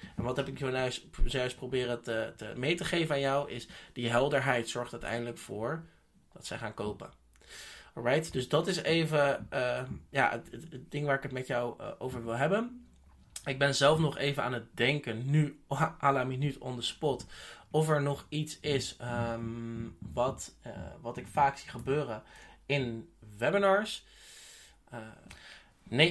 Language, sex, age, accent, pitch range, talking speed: Dutch, male, 20-39, Dutch, 125-150 Hz, 170 wpm